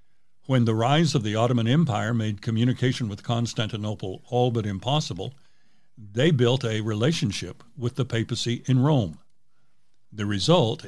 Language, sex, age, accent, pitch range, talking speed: English, male, 60-79, American, 110-140 Hz, 140 wpm